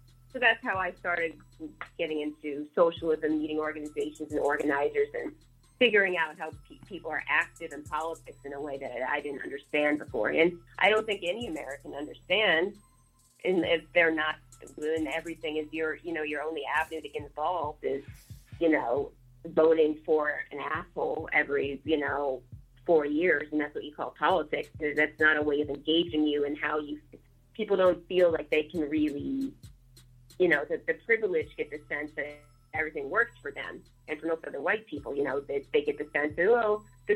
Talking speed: 190 wpm